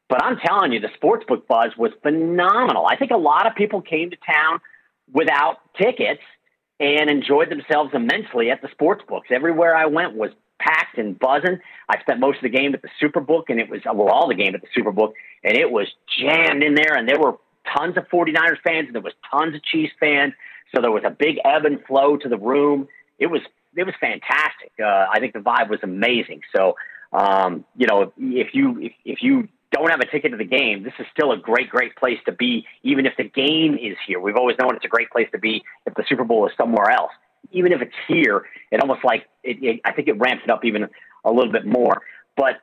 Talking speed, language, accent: 235 wpm, English, American